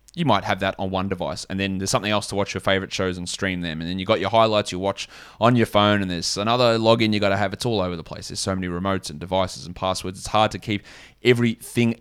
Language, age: English, 20-39